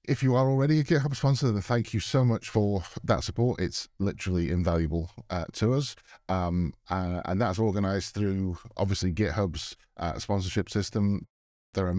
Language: English